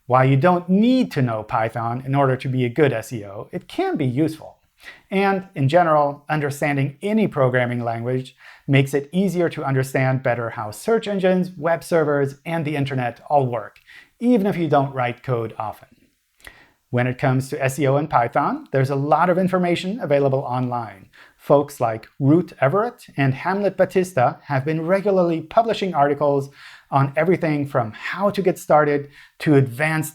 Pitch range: 130-170 Hz